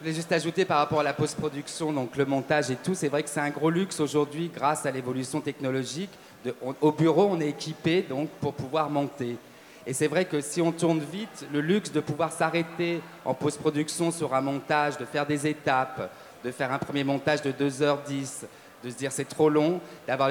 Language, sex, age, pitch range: French, male, 40-59, 140-165 Hz